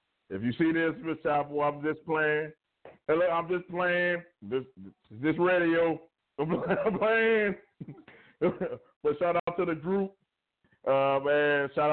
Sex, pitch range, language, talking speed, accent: male, 130-175 Hz, English, 130 wpm, American